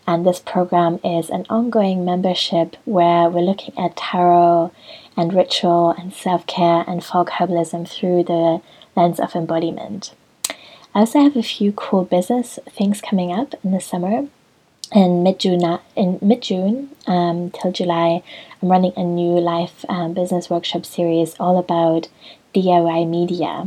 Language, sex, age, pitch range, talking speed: English, female, 20-39, 175-200 Hz, 140 wpm